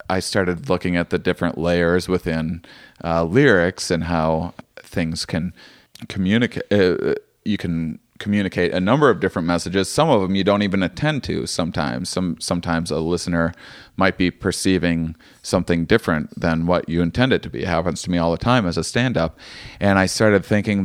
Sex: male